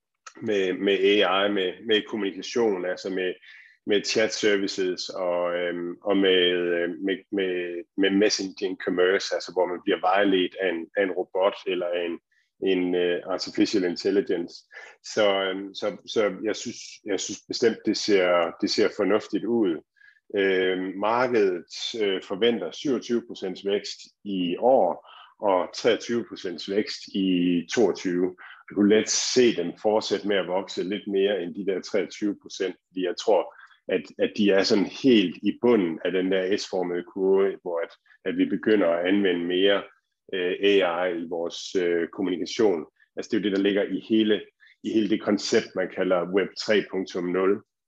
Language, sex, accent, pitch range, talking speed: Danish, male, native, 90-110 Hz, 160 wpm